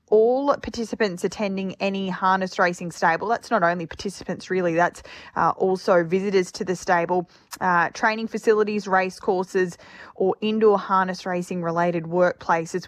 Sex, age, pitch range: female, 20-39, 175-195 Hz